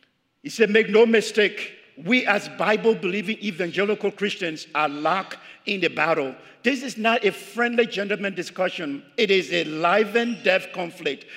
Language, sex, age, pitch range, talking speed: English, male, 50-69, 145-215 Hz, 155 wpm